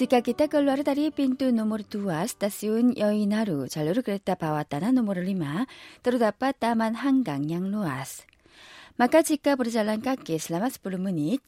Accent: Korean